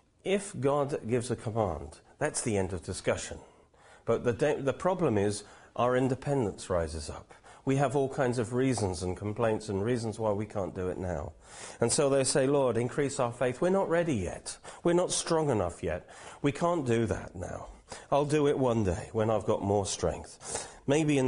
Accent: British